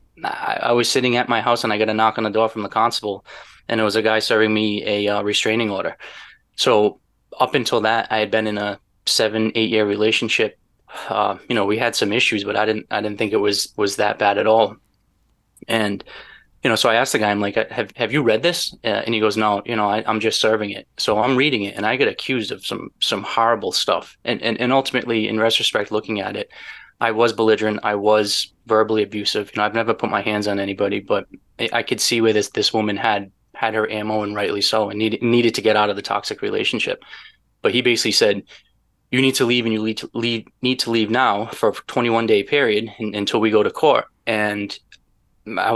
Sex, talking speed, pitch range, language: male, 240 wpm, 105-115 Hz, English